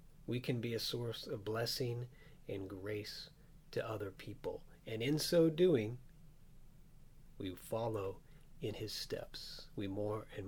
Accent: American